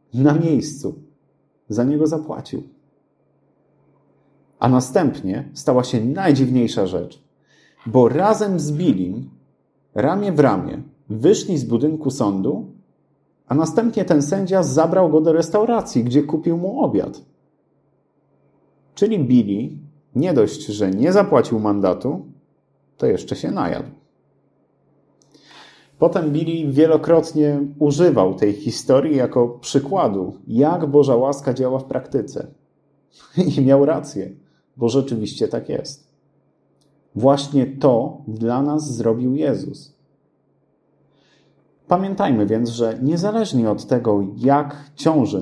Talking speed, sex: 105 wpm, male